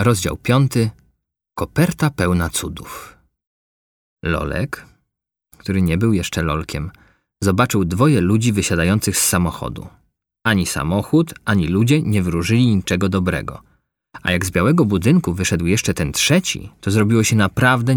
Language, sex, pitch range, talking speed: Polish, male, 85-125 Hz, 125 wpm